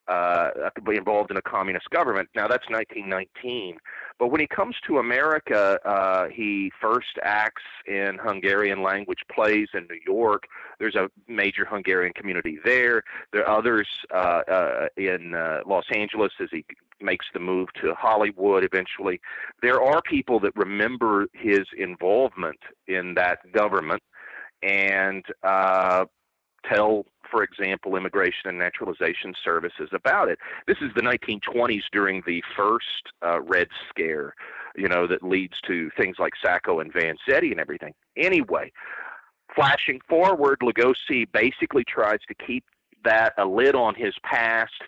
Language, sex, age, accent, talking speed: English, male, 40-59, American, 145 wpm